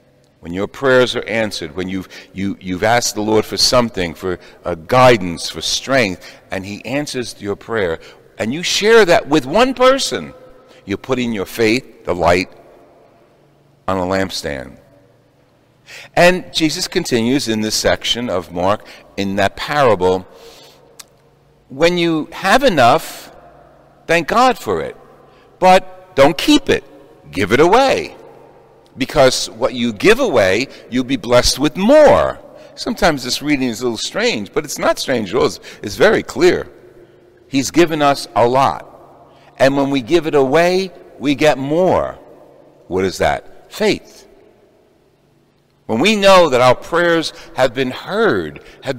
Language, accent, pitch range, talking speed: English, American, 115-175 Hz, 145 wpm